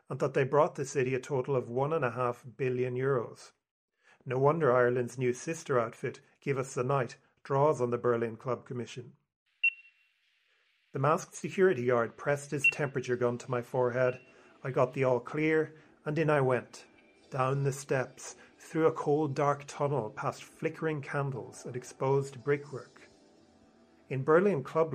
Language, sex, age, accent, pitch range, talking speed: English, male, 40-59, Irish, 125-150 Hz, 165 wpm